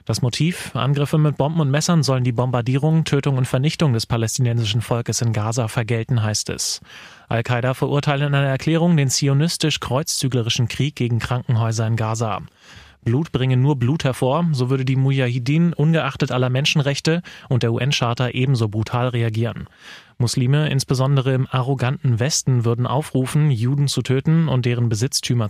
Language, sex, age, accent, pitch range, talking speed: German, male, 30-49, German, 120-145 Hz, 150 wpm